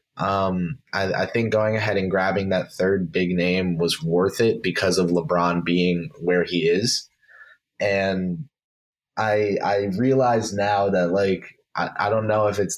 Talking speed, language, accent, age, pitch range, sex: 165 wpm, English, American, 20-39, 90-105 Hz, male